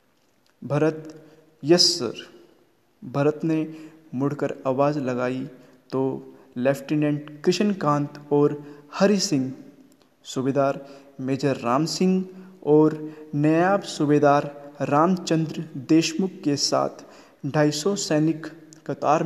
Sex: male